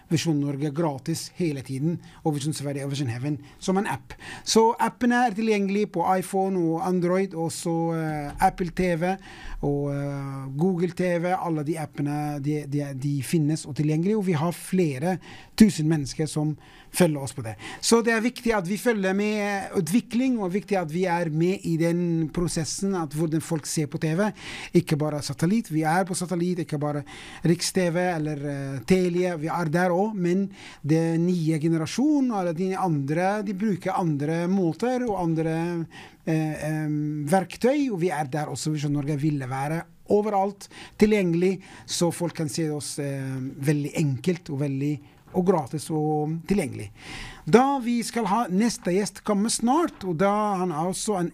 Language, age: English, 30-49